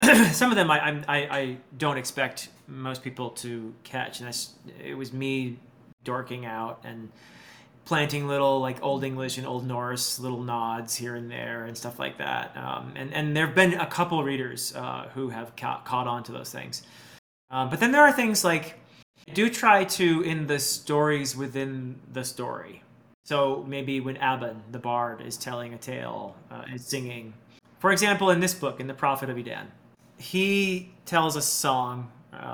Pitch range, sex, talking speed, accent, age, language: 120-145 Hz, male, 180 wpm, American, 30-49, English